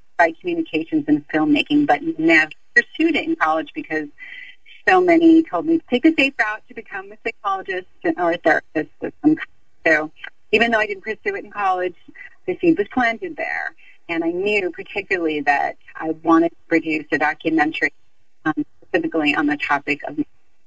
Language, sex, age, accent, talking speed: English, female, 30-49, American, 170 wpm